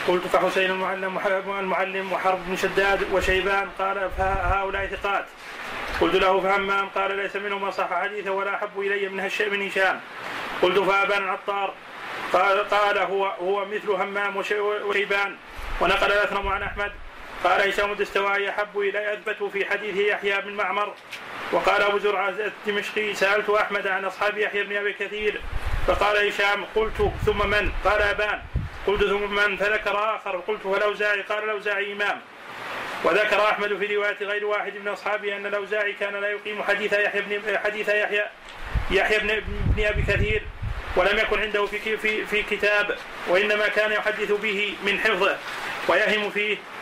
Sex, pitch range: male, 195-210 Hz